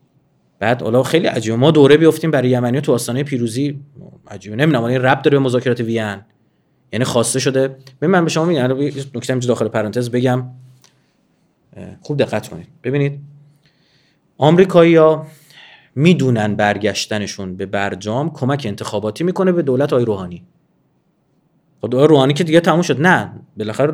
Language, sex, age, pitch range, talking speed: Persian, male, 30-49, 130-190 Hz, 140 wpm